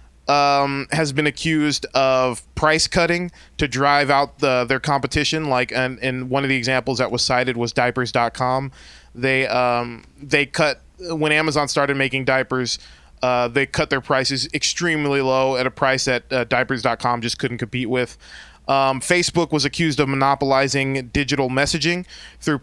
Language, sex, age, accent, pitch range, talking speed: English, male, 20-39, American, 125-155 Hz, 155 wpm